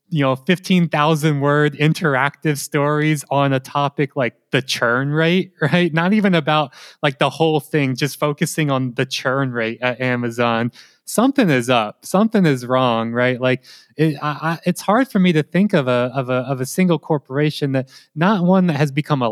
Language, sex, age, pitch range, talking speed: English, male, 20-39, 130-165 Hz, 190 wpm